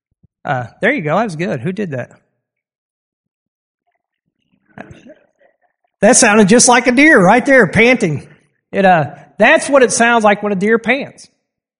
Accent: American